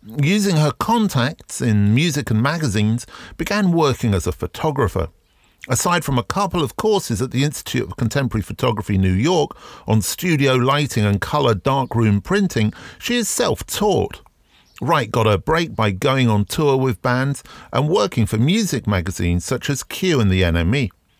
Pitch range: 110-155 Hz